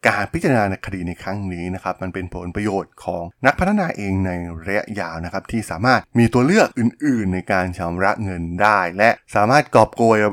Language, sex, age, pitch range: Thai, male, 20-39, 95-120 Hz